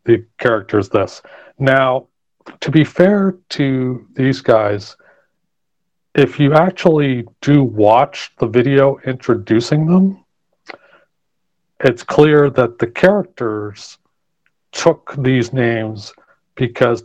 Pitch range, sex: 115-135 Hz, male